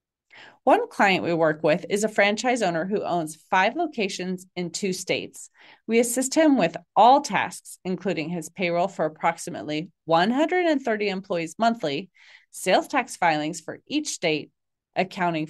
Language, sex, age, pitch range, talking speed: English, female, 30-49, 165-230 Hz, 145 wpm